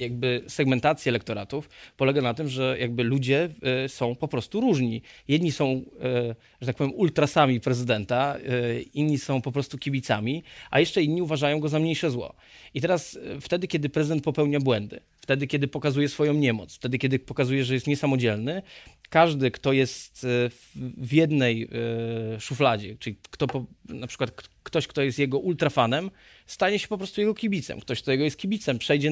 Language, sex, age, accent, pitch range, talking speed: Polish, male, 20-39, native, 130-150 Hz, 165 wpm